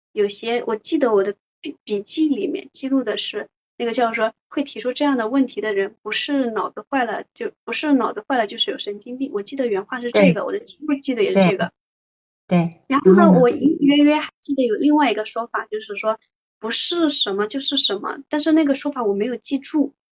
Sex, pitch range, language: female, 220-300 Hz, Chinese